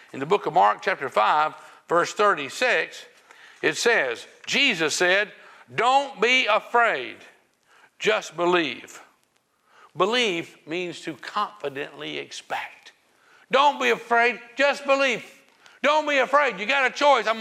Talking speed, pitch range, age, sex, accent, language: 125 wpm, 195-255 Hz, 60-79, male, American, English